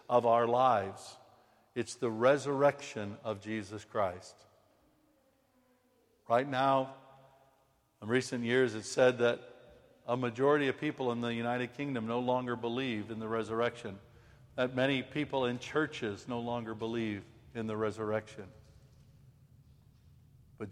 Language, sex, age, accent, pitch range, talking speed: English, male, 60-79, American, 105-130 Hz, 125 wpm